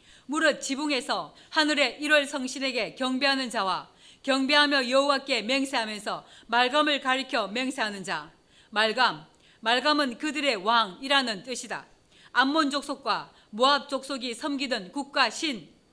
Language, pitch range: Korean, 245-295 Hz